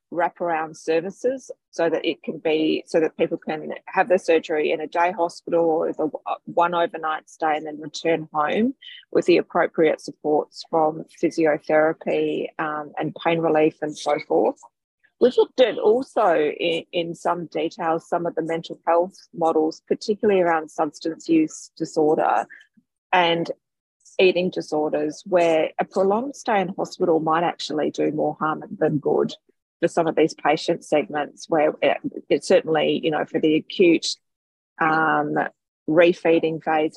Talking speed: 150 wpm